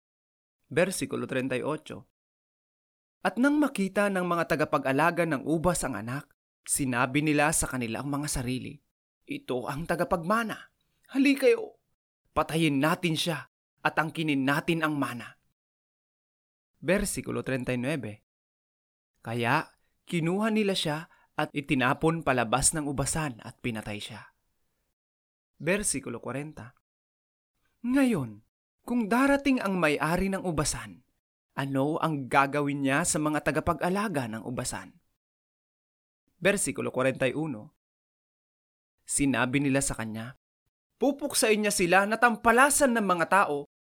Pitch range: 135-195 Hz